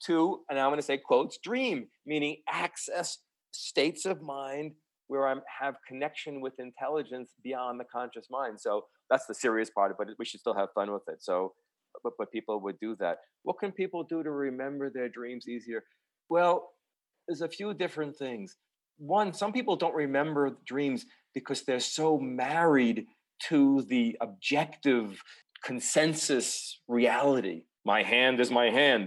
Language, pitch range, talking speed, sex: English, 110-145 Hz, 160 wpm, male